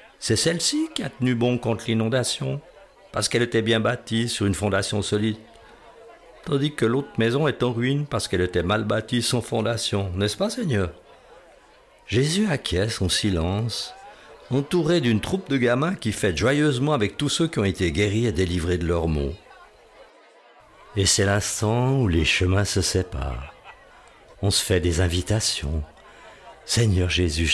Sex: male